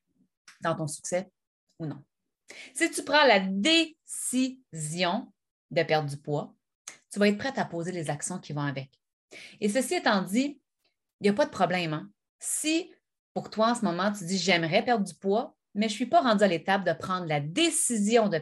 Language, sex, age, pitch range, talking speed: French, female, 30-49, 165-225 Hz, 200 wpm